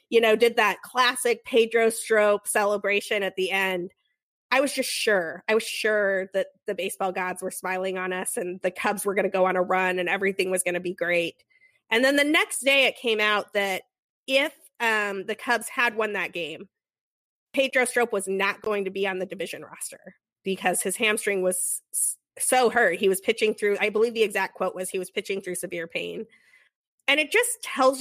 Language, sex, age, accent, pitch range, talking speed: English, female, 20-39, American, 185-230 Hz, 210 wpm